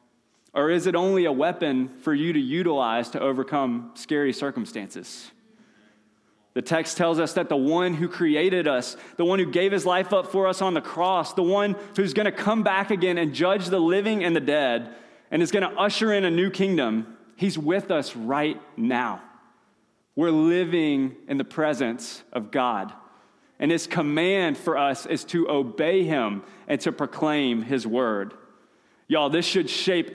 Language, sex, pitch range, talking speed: English, male, 130-175 Hz, 180 wpm